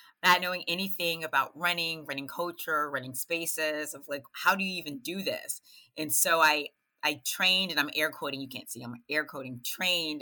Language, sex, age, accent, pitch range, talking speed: English, female, 30-49, American, 145-180 Hz, 195 wpm